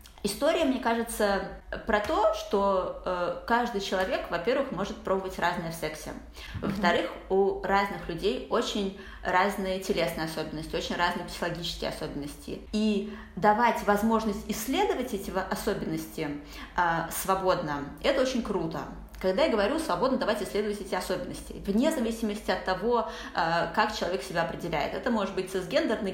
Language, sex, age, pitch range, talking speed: Russian, female, 20-39, 185-225 Hz, 130 wpm